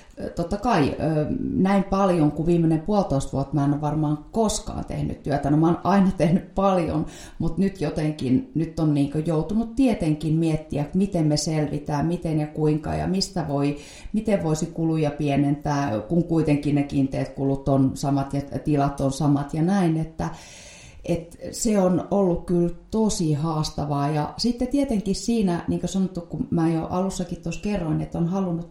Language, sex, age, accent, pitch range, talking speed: Finnish, female, 30-49, native, 155-230 Hz, 165 wpm